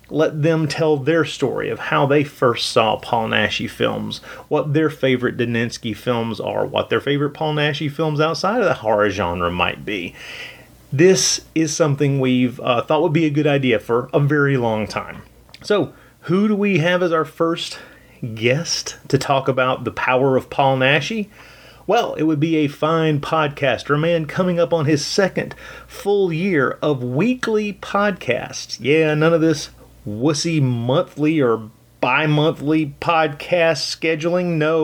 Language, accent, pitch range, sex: English, American, 130-180 Hz, male